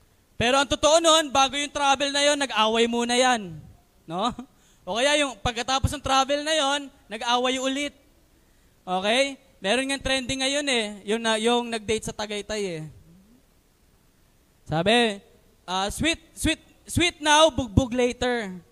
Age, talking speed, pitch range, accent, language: 20-39, 140 wpm, 235-300 Hz, native, Filipino